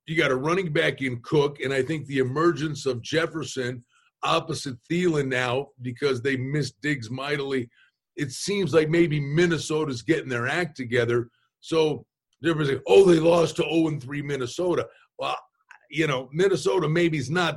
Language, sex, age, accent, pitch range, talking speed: English, male, 50-69, American, 140-185 Hz, 165 wpm